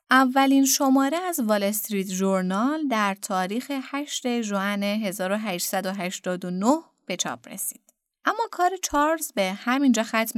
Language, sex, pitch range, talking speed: Persian, female, 200-265 Hz, 110 wpm